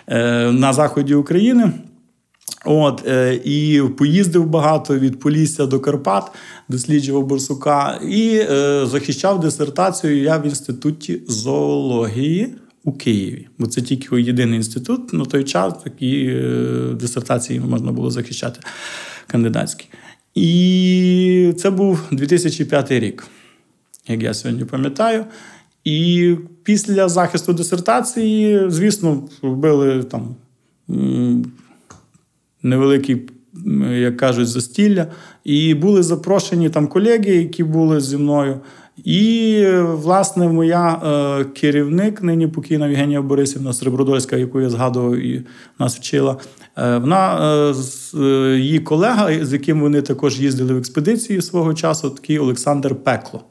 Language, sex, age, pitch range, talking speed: Ukrainian, male, 40-59, 130-175 Hz, 105 wpm